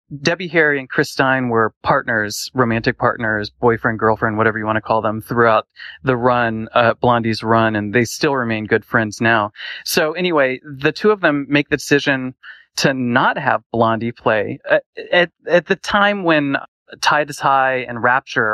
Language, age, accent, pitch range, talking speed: English, 30-49, American, 115-145 Hz, 180 wpm